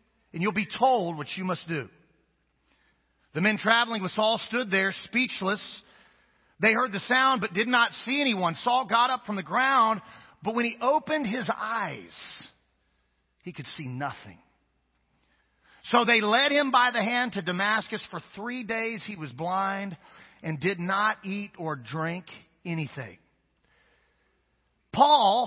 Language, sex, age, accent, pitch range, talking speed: English, male, 40-59, American, 195-250 Hz, 150 wpm